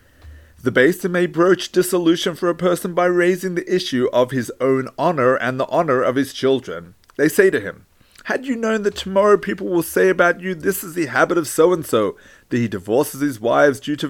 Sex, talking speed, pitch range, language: male, 215 wpm, 120-180 Hz, English